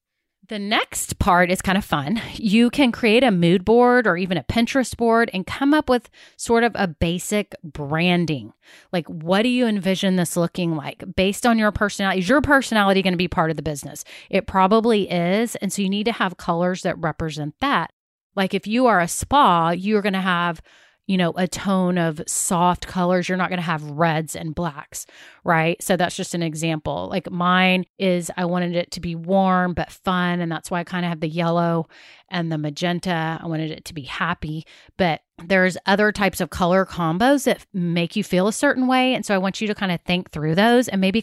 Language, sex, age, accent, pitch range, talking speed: English, female, 30-49, American, 170-210 Hz, 220 wpm